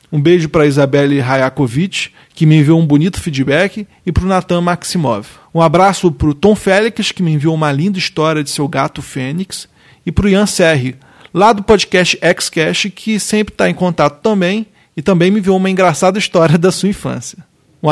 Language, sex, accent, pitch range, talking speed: Portuguese, male, Brazilian, 145-190 Hz, 195 wpm